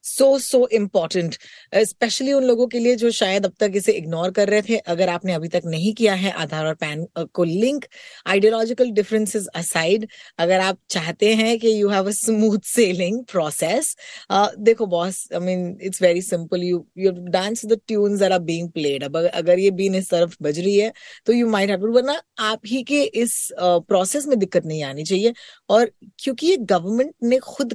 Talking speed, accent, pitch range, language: 175 wpm, native, 180-250 Hz, Hindi